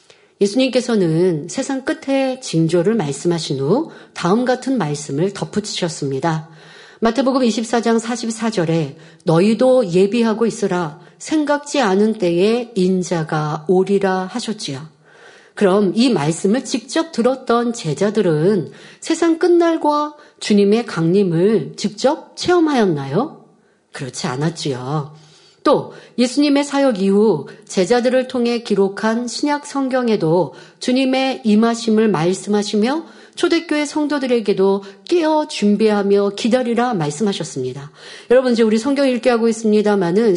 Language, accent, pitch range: Korean, native, 185-275 Hz